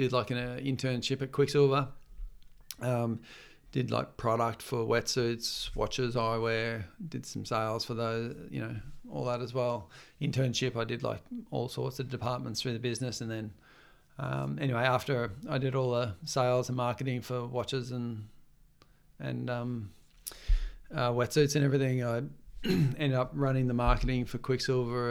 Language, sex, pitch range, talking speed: English, male, 120-130 Hz, 160 wpm